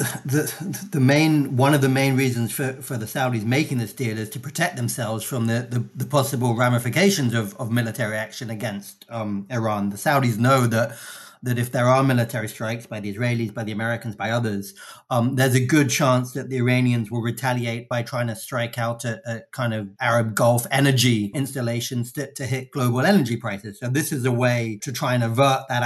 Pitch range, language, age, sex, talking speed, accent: 115-135 Hz, English, 30-49, male, 205 wpm, British